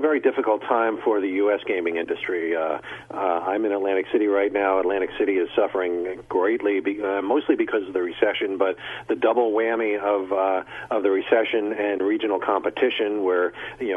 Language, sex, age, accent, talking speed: English, male, 40-59, American, 180 wpm